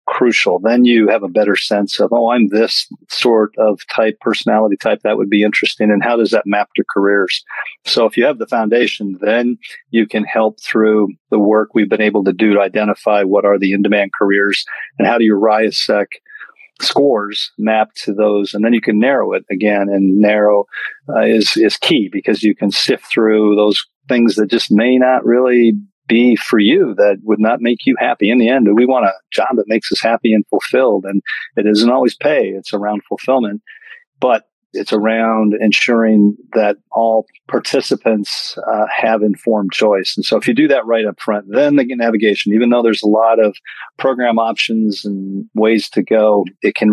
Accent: American